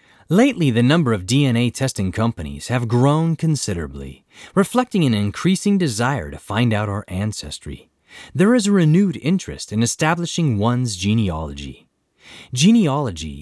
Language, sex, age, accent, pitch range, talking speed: English, male, 30-49, American, 105-160 Hz, 130 wpm